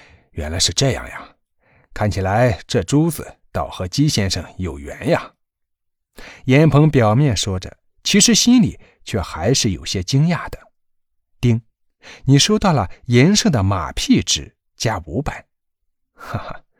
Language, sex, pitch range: Chinese, male, 95-140 Hz